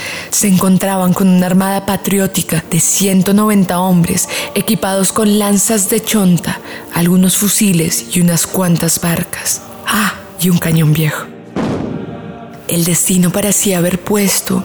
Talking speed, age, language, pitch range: 125 wpm, 30-49, Spanish, 170-195 Hz